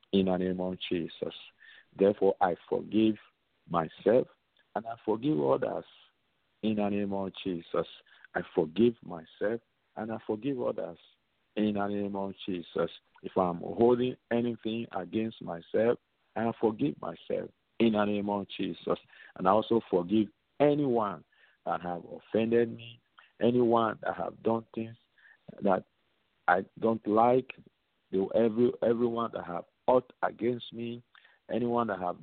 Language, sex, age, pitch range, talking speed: English, male, 50-69, 95-115 Hz, 135 wpm